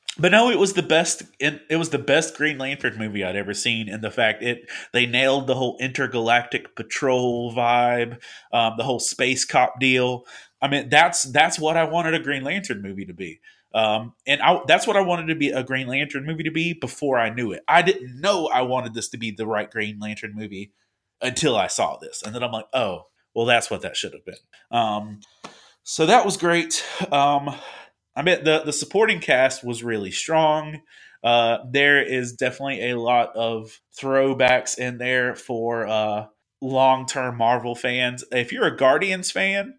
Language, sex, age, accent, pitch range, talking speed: English, male, 30-49, American, 115-145 Hz, 195 wpm